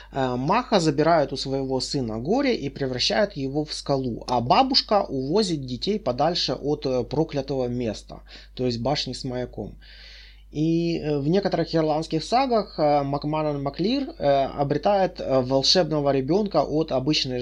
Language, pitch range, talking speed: Russian, 120-155 Hz, 125 wpm